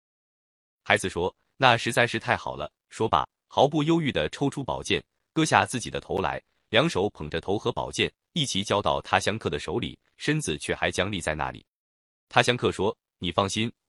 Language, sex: Chinese, male